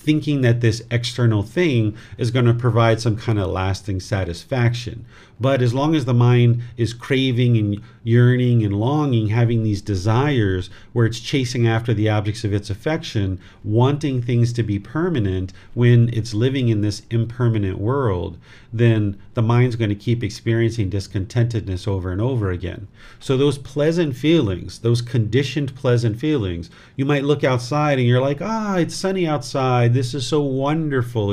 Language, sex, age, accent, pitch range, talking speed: English, male, 40-59, American, 105-130 Hz, 165 wpm